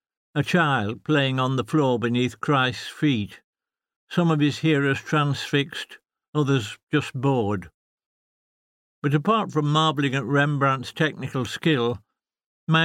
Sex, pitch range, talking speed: male, 125-155 Hz, 120 wpm